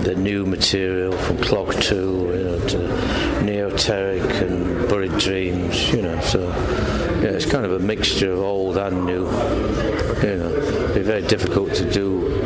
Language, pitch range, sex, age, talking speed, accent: Italian, 90-105 Hz, male, 60-79, 165 wpm, British